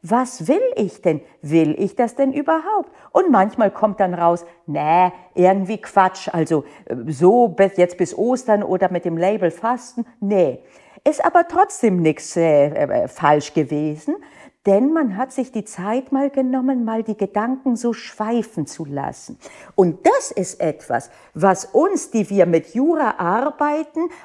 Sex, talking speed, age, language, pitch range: female, 155 wpm, 50-69, German, 180-280 Hz